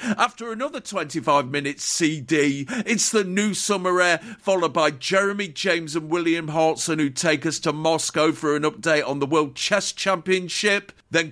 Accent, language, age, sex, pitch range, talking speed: British, English, 50-69, male, 140-180 Hz, 165 wpm